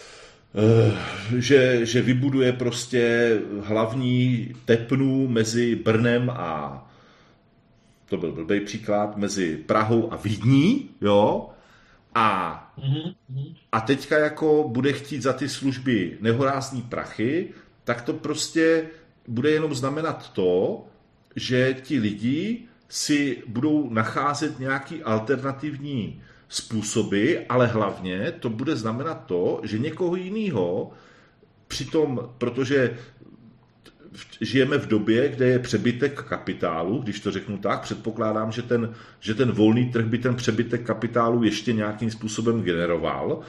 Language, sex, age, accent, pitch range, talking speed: Czech, male, 40-59, native, 105-130 Hz, 115 wpm